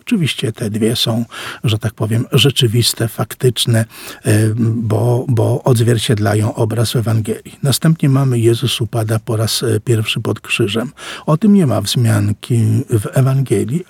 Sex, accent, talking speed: male, native, 135 wpm